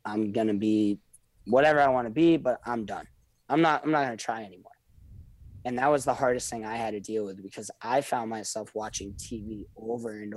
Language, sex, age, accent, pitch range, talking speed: English, male, 20-39, American, 100-115 Hz, 225 wpm